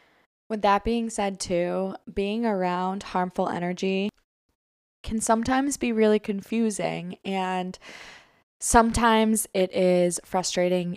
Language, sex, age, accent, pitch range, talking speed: English, female, 20-39, American, 175-200 Hz, 105 wpm